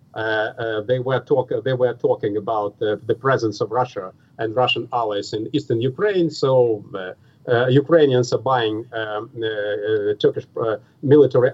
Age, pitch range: 50-69, 125-195 Hz